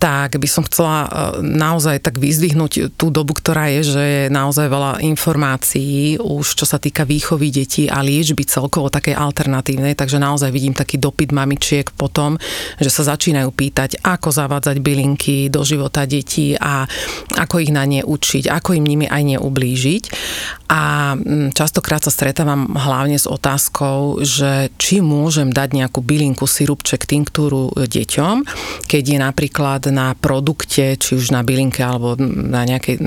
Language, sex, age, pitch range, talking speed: Slovak, female, 30-49, 135-155 Hz, 150 wpm